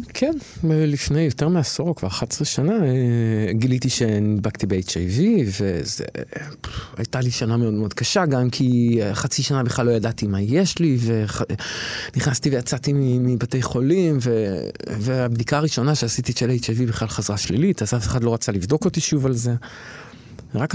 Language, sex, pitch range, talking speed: Hebrew, male, 110-150 Hz, 145 wpm